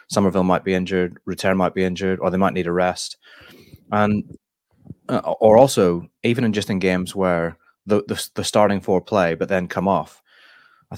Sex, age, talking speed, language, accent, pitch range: male, 20-39, 190 wpm, English, British, 85-100 Hz